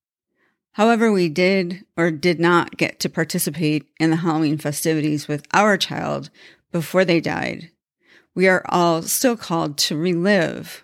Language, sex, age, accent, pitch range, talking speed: English, female, 40-59, American, 155-180 Hz, 145 wpm